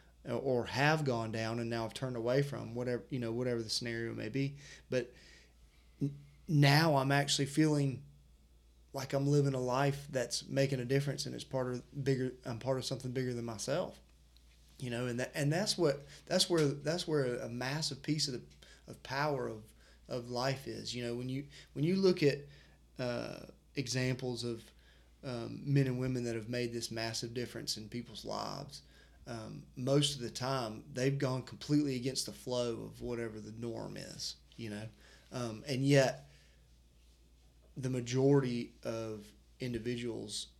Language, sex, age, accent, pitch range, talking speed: English, male, 30-49, American, 110-135 Hz, 170 wpm